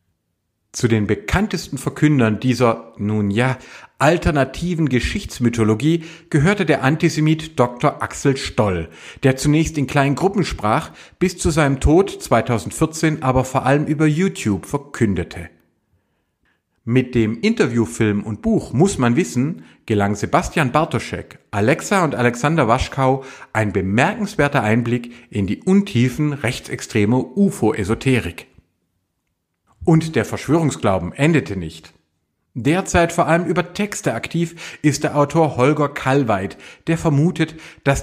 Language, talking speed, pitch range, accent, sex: German, 115 wpm, 110-160 Hz, German, male